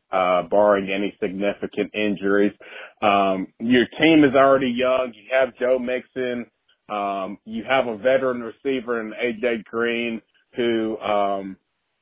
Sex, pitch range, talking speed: male, 100-130 Hz, 130 wpm